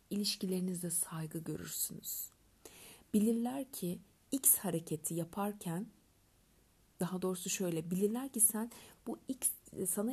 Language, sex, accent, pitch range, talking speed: Turkish, female, native, 160-200 Hz, 100 wpm